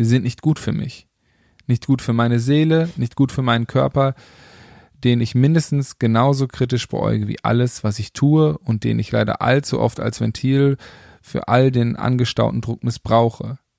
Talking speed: 175 wpm